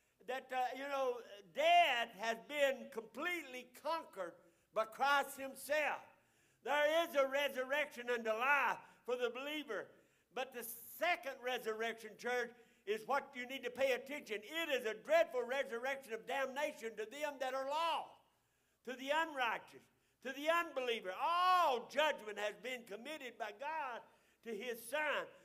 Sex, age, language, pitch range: male, 60-79, English, 225-295 Hz